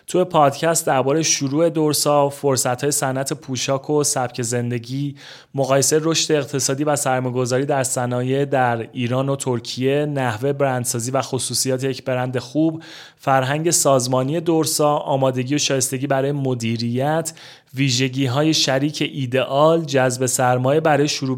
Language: Persian